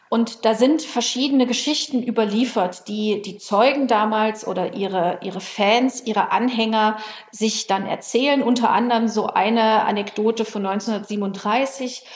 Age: 40-59